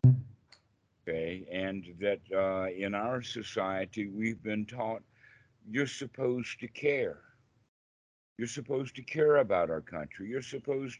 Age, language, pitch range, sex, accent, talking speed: 60-79, English, 90-120 Hz, male, American, 125 wpm